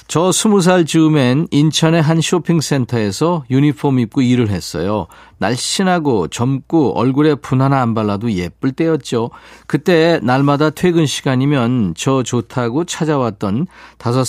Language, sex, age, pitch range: Korean, male, 50-69, 115-160 Hz